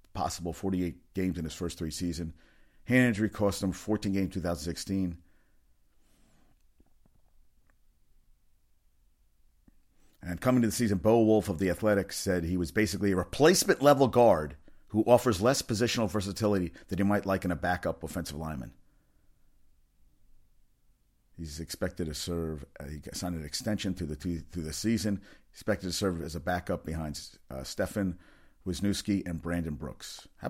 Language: English